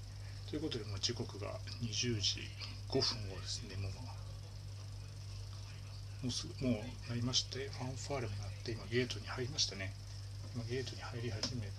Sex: male